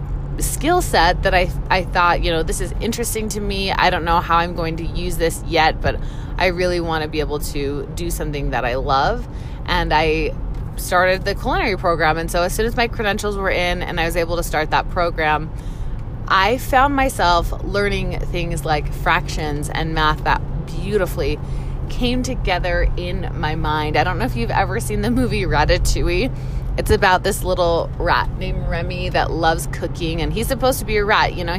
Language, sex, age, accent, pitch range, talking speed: English, female, 20-39, American, 140-205 Hz, 200 wpm